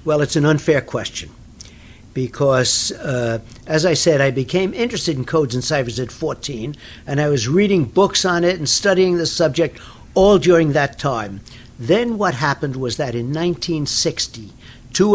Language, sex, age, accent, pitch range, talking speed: English, male, 60-79, American, 120-170 Hz, 165 wpm